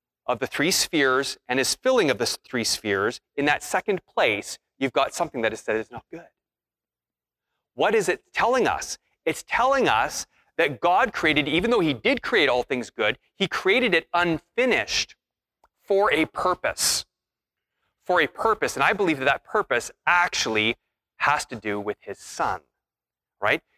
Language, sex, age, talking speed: English, male, 30-49, 170 wpm